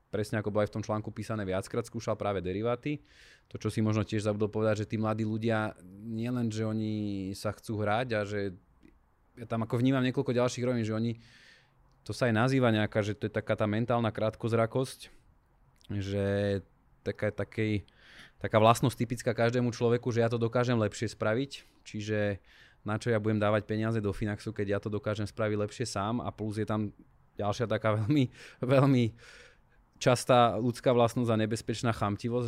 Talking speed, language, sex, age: 180 wpm, Slovak, male, 20-39